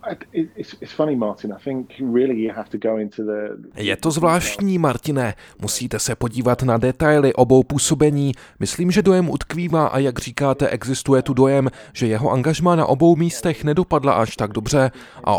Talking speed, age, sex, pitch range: 125 wpm, 20-39, male, 125-155 Hz